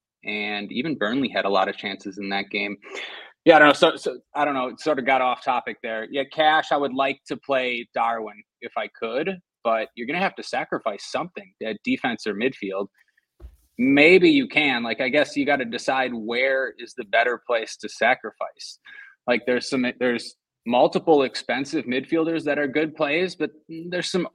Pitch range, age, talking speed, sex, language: 115-150 Hz, 20-39, 195 wpm, male, English